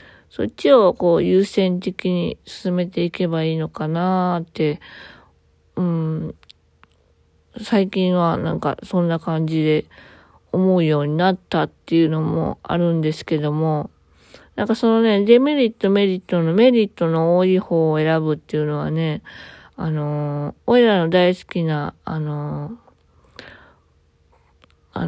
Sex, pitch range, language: female, 150-200 Hz, Japanese